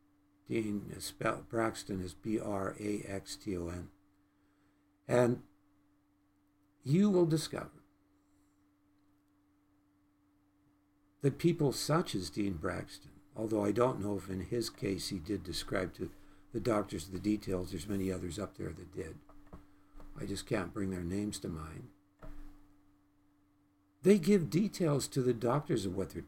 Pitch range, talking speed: 100-150 Hz, 125 wpm